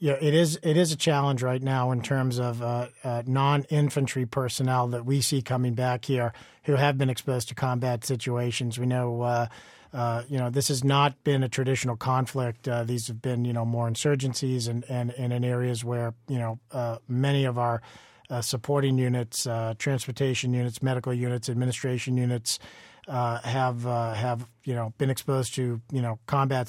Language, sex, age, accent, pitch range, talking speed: English, male, 40-59, American, 120-135 Hz, 190 wpm